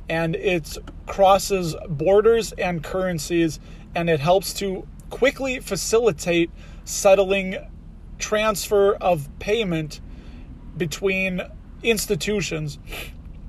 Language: English